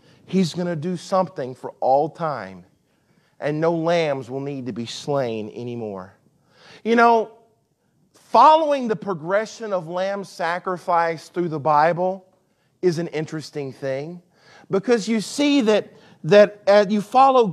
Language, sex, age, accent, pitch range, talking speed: English, male, 40-59, American, 160-205 Hz, 135 wpm